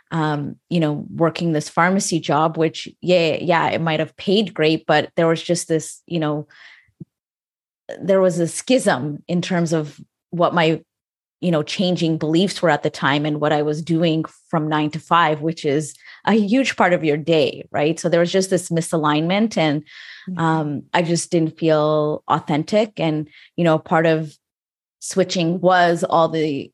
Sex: female